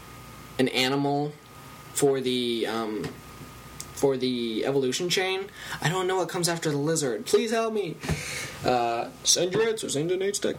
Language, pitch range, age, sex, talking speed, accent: English, 120-150 Hz, 10-29, male, 155 wpm, American